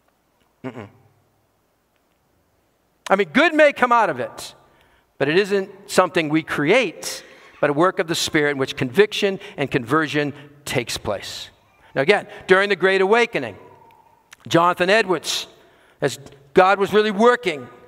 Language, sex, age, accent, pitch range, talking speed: English, male, 50-69, American, 165-220 Hz, 135 wpm